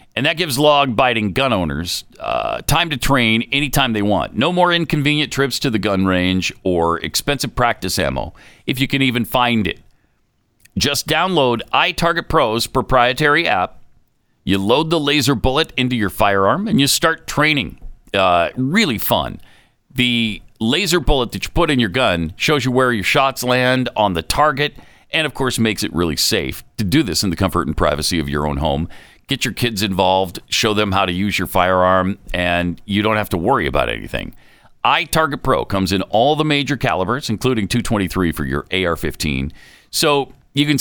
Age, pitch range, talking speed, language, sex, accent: 50-69, 95-145 Hz, 180 wpm, English, male, American